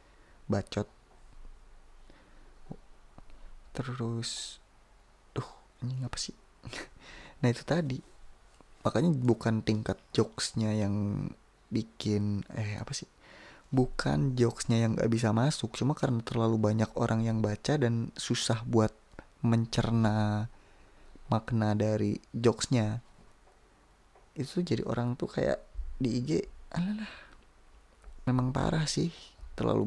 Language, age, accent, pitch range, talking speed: Indonesian, 20-39, native, 110-130 Hz, 100 wpm